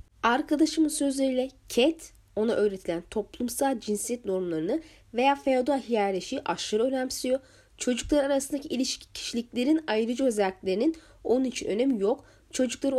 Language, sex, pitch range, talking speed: Turkish, female, 205-255 Hz, 110 wpm